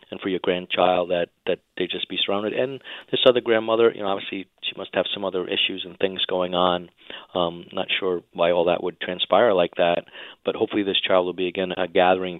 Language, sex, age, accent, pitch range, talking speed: English, male, 40-59, American, 90-100 Hz, 225 wpm